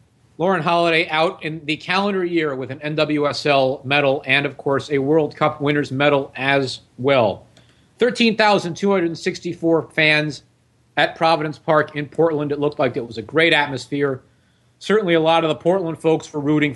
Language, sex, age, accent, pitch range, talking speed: English, male, 40-59, American, 135-170 Hz, 160 wpm